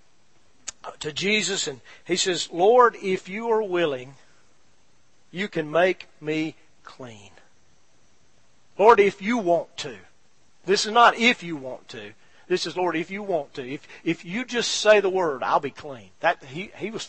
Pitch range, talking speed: 165-210 Hz, 170 wpm